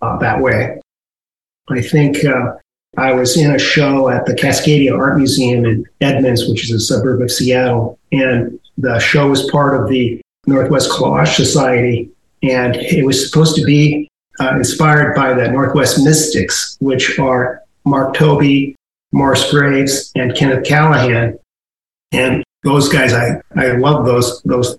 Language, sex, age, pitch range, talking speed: English, male, 40-59, 125-150 Hz, 150 wpm